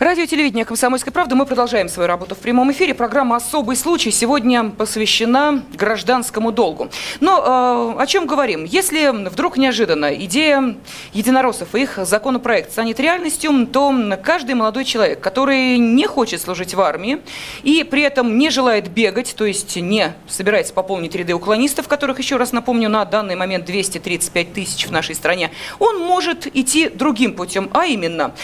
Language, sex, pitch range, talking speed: Russian, female, 210-285 Hz, 160 wpm